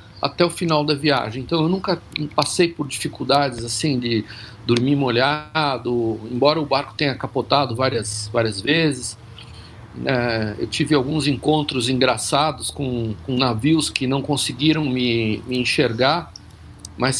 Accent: Brazilian